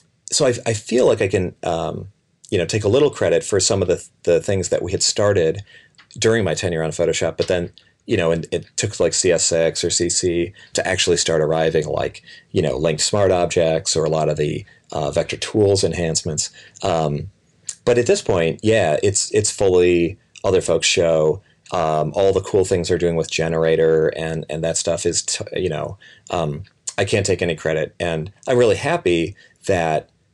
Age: 30-49